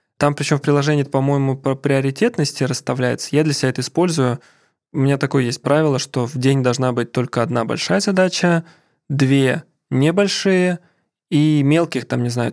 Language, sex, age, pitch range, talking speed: Russian, male, 20-39, 130-150 Hz, 165 wpm